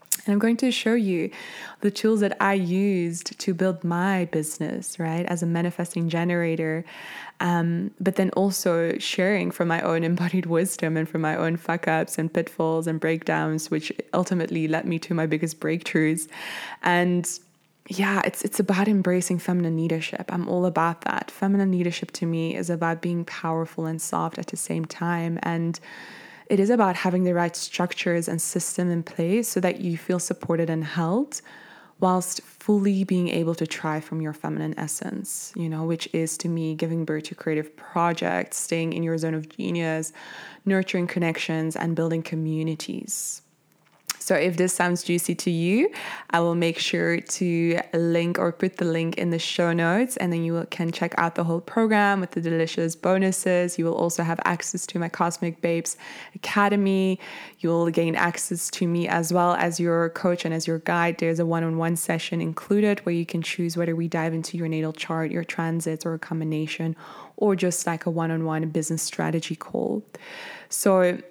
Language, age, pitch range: English, 20-39, 165-180 Hz